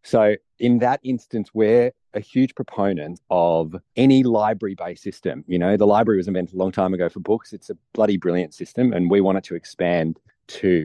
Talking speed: 200 wpm